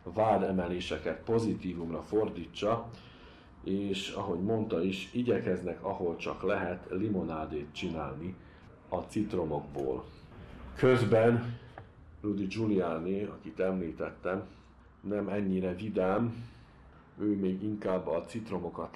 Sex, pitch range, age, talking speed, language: male, 85-105 Hz, 50-69, 90 wpm, Hungarian